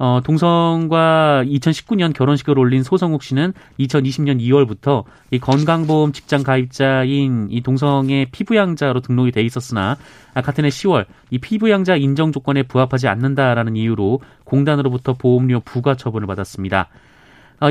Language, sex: Korean, male